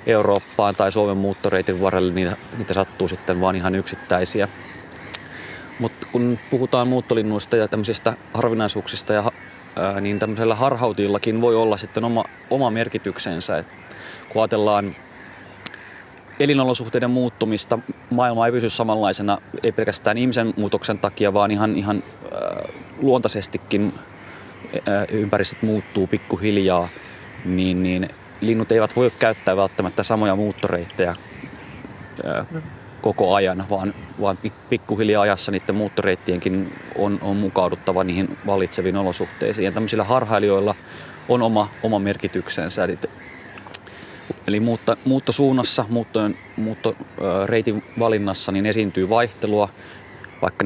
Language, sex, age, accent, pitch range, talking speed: Finnish, male, 30-49, native, 95-115 Hz, 105 wpm